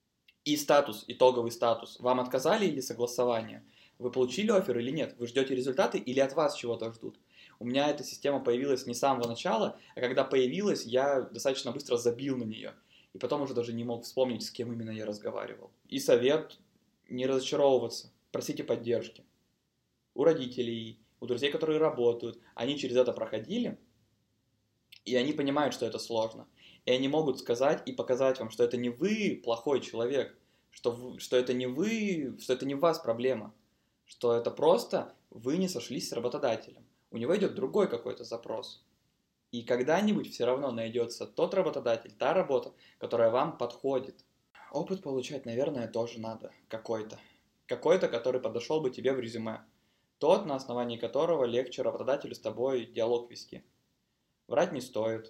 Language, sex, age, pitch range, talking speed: Russian, male, 20-39, 115-135 Hz, 165 wpm